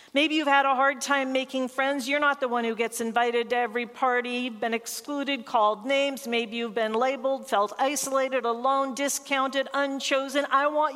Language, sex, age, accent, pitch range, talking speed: English, female, 50-69, American, 220-285 Hz, 180 wpm